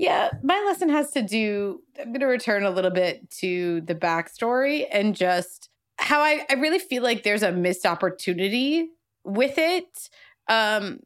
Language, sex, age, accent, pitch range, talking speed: English, female, 20-39, American, 195-270 Hz, 170 wpm